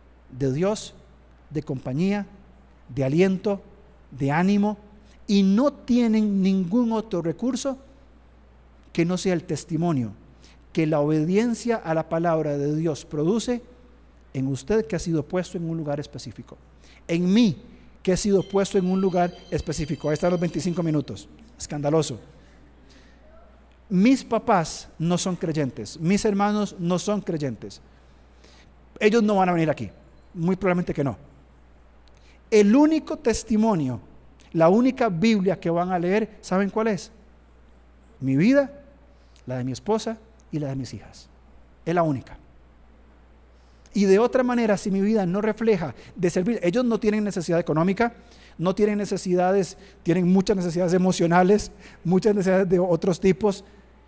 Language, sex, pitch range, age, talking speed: Spanish, male, 125-205 Hz, 50-69, 145 wpm